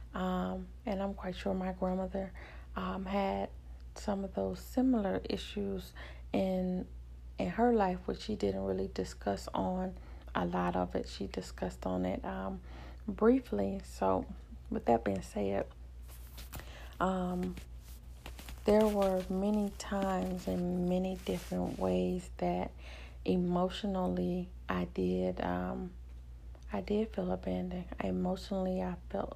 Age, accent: 30-49, American